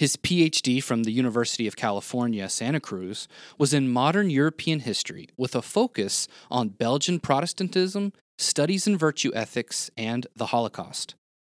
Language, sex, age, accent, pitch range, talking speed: English, male, 30-49, American, 115-160 Hz, 140 wpm